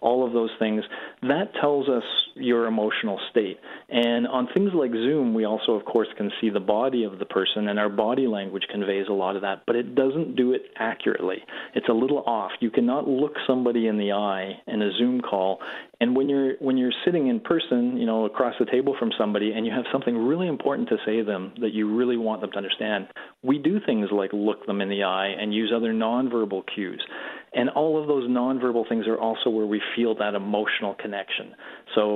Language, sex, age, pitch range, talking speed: English, male, 40-59, 105-125 Hz, 220 wpm